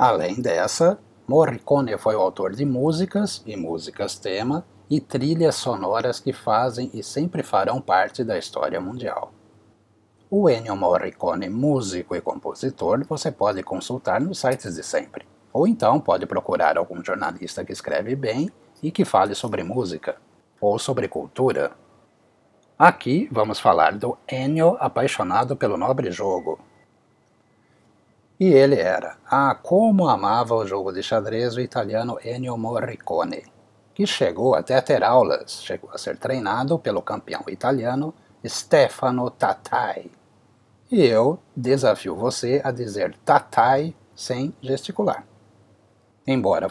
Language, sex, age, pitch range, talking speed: Portuguese, male, 60-79, 110-145 Hz, 130 wpm